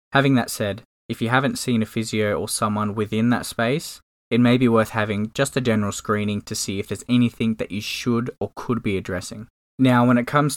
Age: 10-29